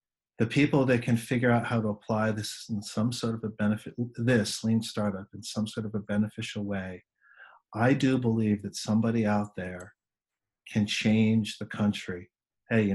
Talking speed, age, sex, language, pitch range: 180 wpm, 40-59, male, English, 100-115 Hz